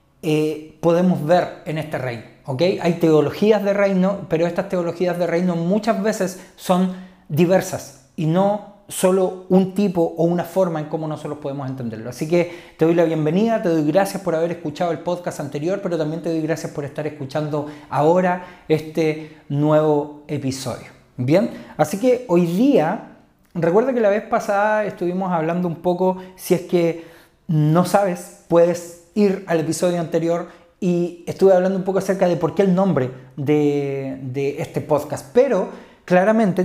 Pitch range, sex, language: 155-190 Hz, male, Spanish